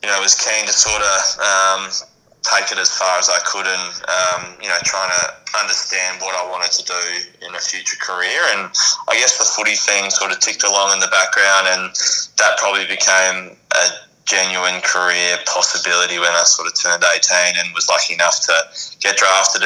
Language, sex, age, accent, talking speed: English, male, 20-39, Australian, 200 wpm